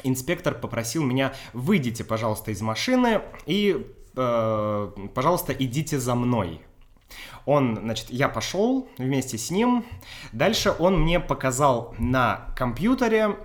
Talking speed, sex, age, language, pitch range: 115 wpm, male, 20-39, Russian, 115-165 Hz